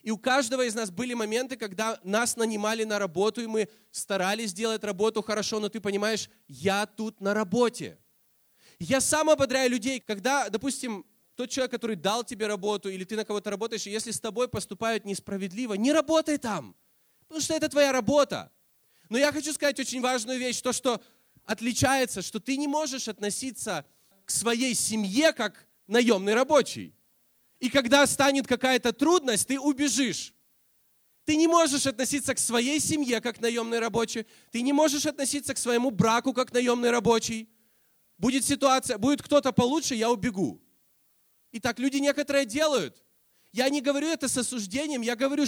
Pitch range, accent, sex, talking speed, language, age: 215-270 Hz, native, male, 165 wpm, Russian, 20-39